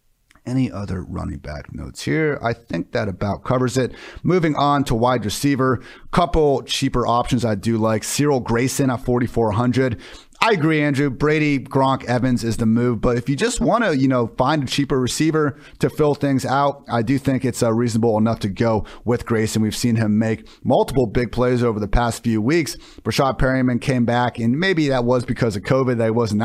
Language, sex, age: English, male, 30-49